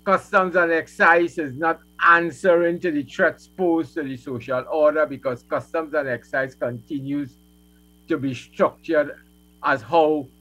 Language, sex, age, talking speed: English, male, 60-79, 140 wpm